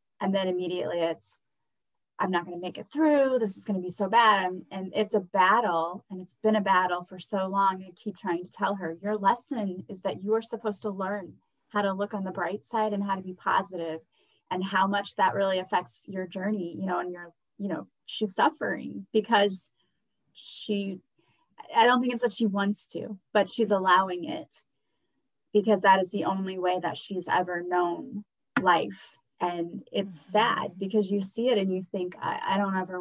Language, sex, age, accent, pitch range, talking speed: English, female, 20-39, American, 180-210 Hz, 200 wpm